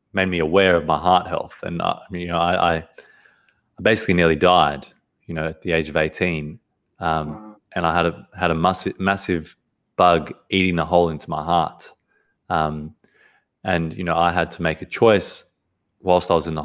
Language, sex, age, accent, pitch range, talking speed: English, male, 20-39, Australian, 80-95 Hz, 200 wpm